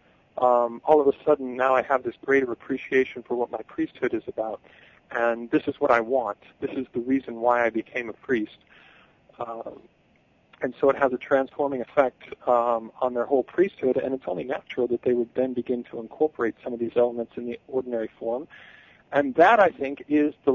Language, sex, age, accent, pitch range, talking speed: English, male, 40-59, American, 120-135 Hz, 205 wpm